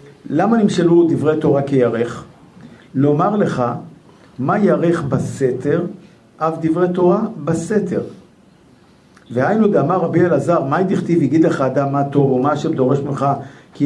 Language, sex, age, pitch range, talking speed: Hebrew, male, 50-69, 130-170 Hz, 130 wpm